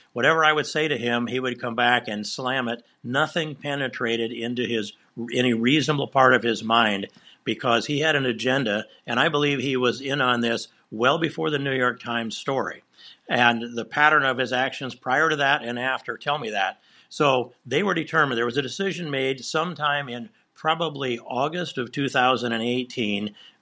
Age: 60-79